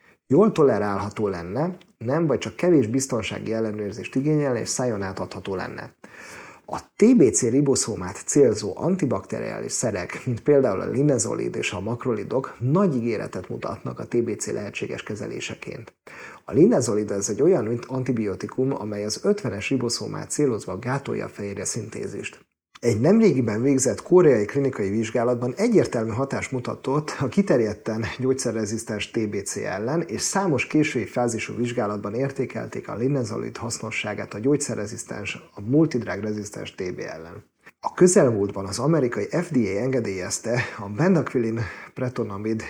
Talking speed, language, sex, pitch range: 125 wpm, Hungarian, male, 105-130 Hz